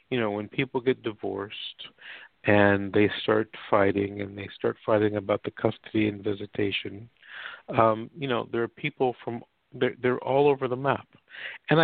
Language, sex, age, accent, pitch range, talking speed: English, male, 50-69, American, 110-135 Hz, 165 wpm